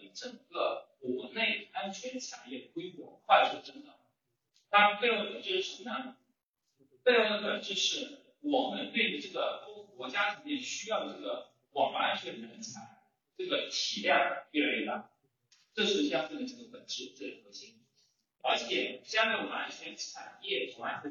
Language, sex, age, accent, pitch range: Chinese, male, 40-59, native, 190-300 Hz